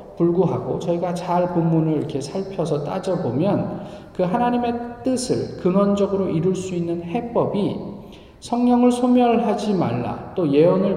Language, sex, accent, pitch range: Korean, male, native, 140-195 Hz